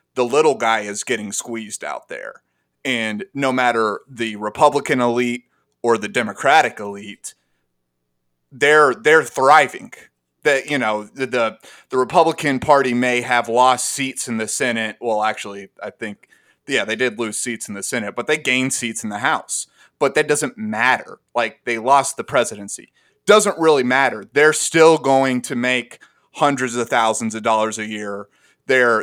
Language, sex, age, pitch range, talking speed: English, male, 30-49, 110-135 Hz, 165 wpm